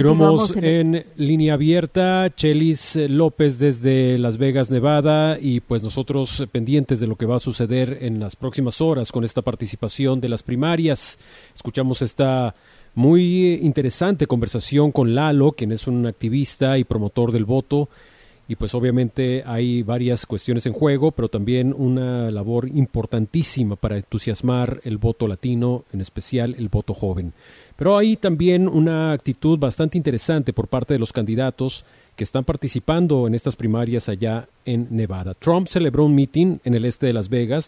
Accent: Mexican